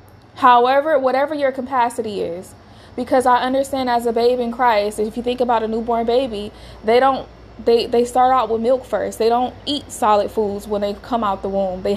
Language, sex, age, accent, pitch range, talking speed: English, female, 20-39, American, 225-270 Hz, 205 wpm